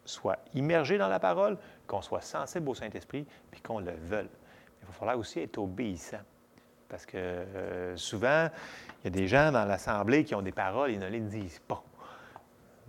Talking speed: 190 wpm